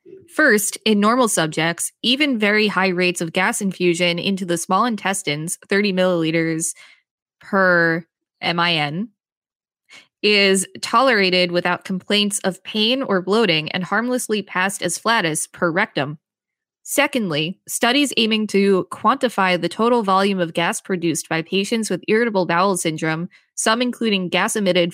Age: 20-39